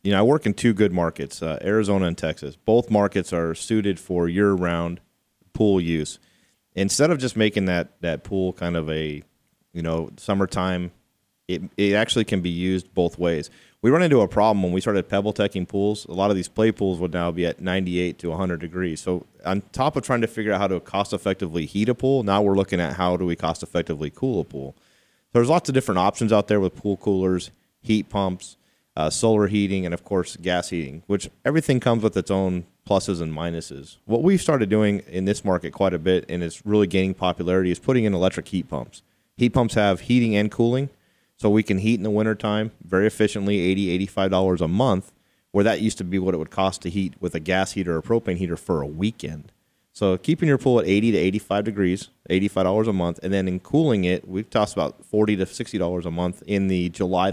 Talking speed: 220 wpm